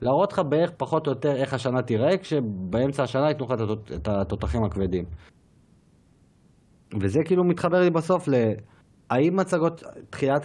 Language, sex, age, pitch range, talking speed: Hebrew, male, 30-49, 110-145 Hz, 150 wpm